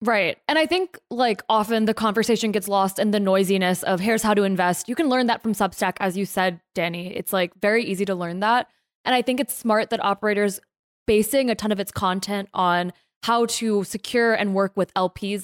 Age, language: 20-39, English